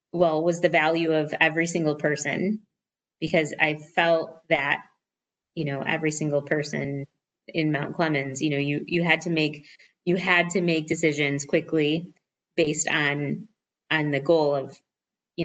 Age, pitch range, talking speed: 20-39, 145-180 Hz, 155 wpm